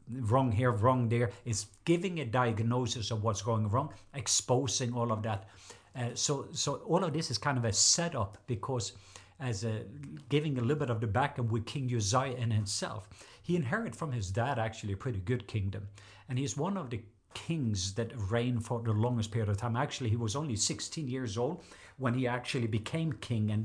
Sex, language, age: male, English, 50-69